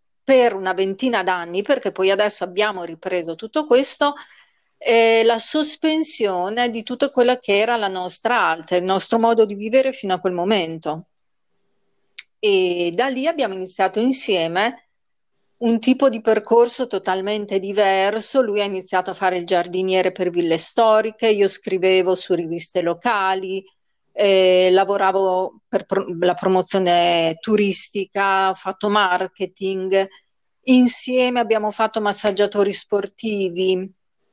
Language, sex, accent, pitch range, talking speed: English, female, Italian, 185-225 Hz, 125 wpm